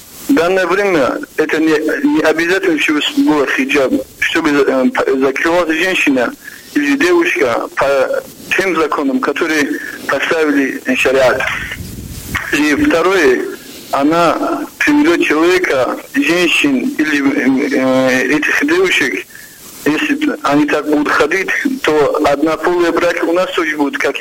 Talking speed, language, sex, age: 110 wpm, Russian, male, 60-79